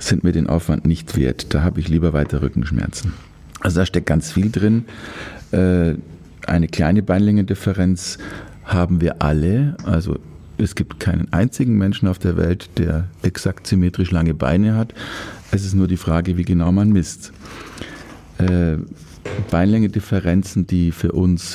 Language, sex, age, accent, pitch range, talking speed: German, male, 50-69, German, 85-100 Hz, 145 wpm